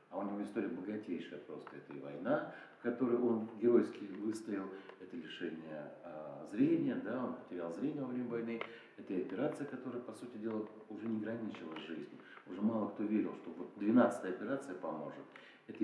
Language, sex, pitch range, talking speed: Russian, male, 95-135 Hz, 175 wpm